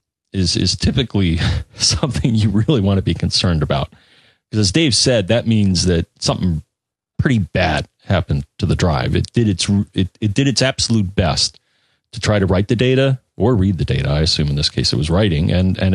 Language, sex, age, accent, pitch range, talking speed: English, male, 40-59, American, 90-115 Hz, 205 wpm